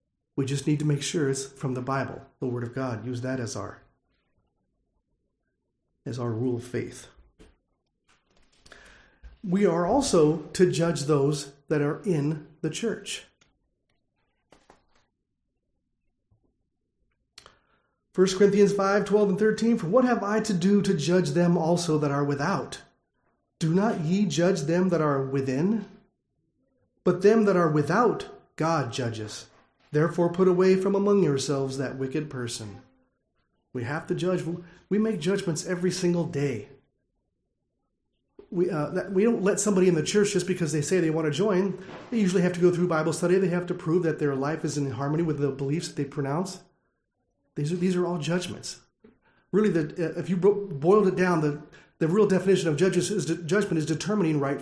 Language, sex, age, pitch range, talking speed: English, male, 40-59, 140-190 Hz, 170 wpm